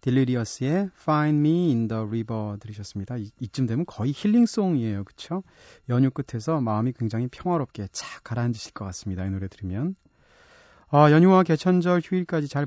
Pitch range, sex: 115-175 Hz, male